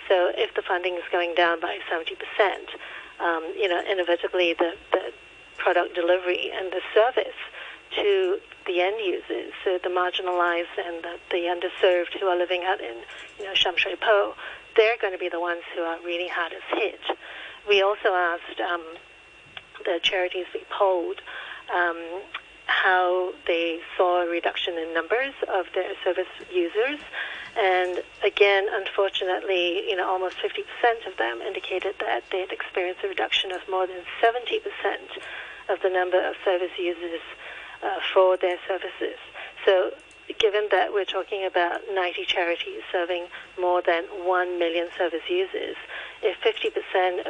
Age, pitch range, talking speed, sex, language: 60-79, 175-205 Hz, 150 wpm, female, English